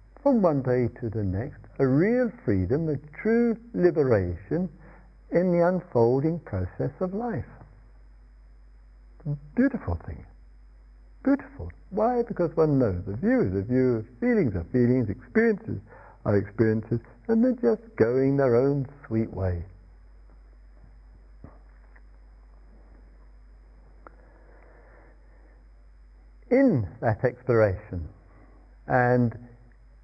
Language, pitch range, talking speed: English, 95-150 Hz, 100 wpm